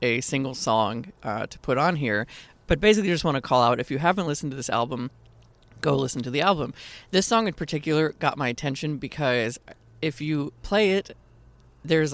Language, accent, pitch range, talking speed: English, American, 120-150 Hz, 200 wpm